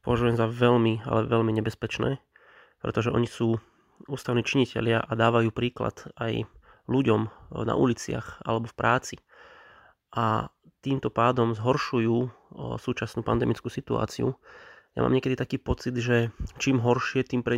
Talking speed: 130 wpm